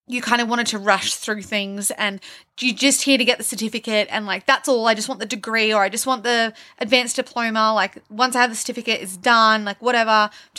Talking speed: 245 wpm